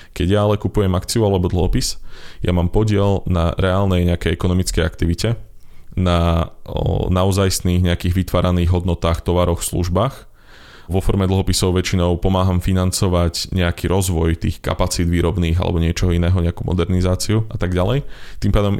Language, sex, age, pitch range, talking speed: Slovak, male, 20-39, 85-100 Hz, 135 wpm